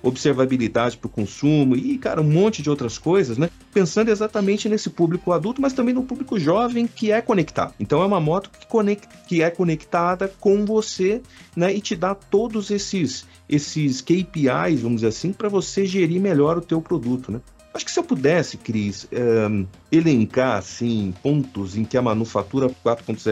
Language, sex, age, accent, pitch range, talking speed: Portuguese, male, 50-69, Brazilian, 115-175 Hz, 180 wpm